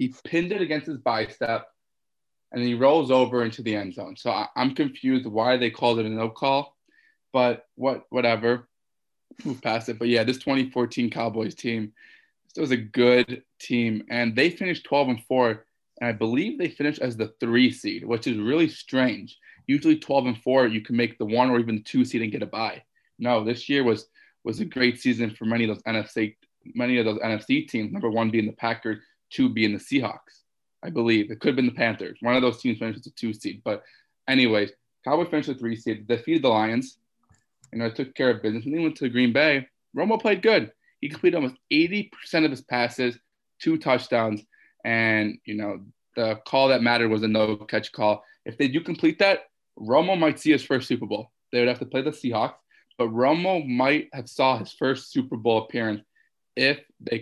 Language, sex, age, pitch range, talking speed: English, male, 20-39, 115-145 Hz, 210 wpm